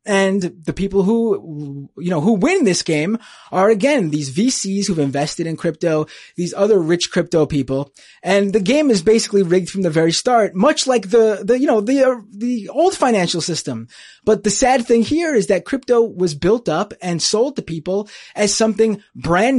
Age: 20-39